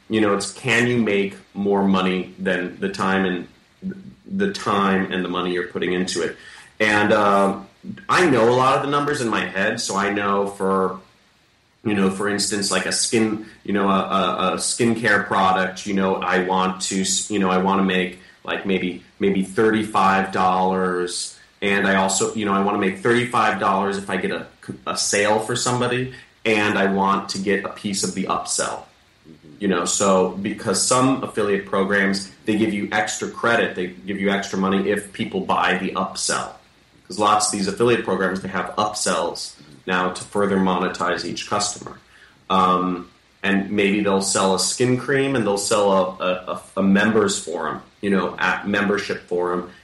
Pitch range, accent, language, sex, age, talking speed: 95-105 Hz, American, English, male, 30-49, 185 wpm